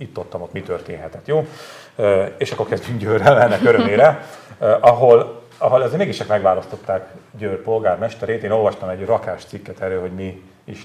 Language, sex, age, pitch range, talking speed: Hungarian, male, 40-59, 95-110 Hz, 155 wpm